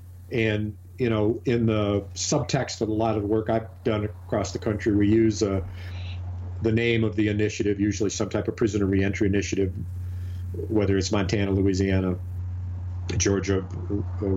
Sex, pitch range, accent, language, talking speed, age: male, 90-110 Hz, American, English, 160 wpm, 50-69